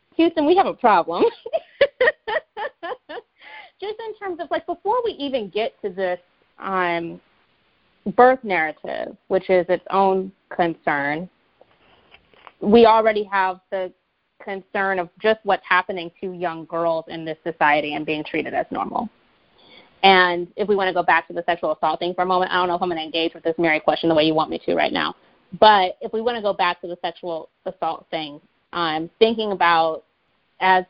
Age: 30-49